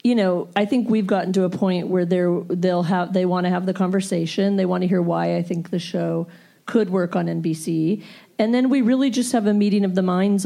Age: 40-59